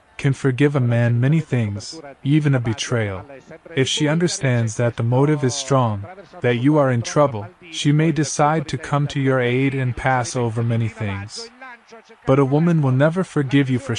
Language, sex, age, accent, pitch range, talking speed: Italian, male, 20-39, American, 115-145 Hz, 185 wpm